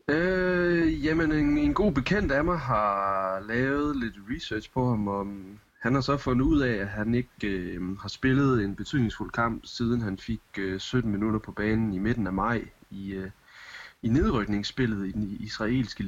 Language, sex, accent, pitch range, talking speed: Danish, male, native, 95-115 Hz, 185 wpm